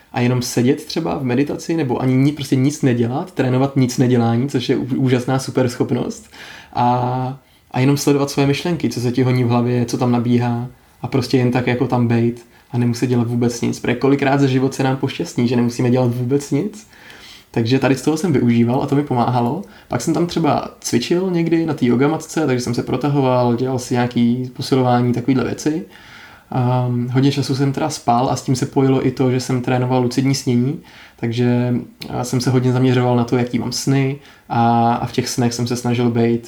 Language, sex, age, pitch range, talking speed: Czech, male, 20-39, 120-135 Hz, 205 wpm